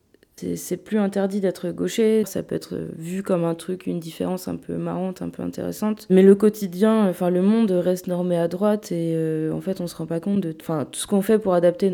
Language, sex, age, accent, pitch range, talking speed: French, female, 20-39, French, 160-195 Hz, 240 wpm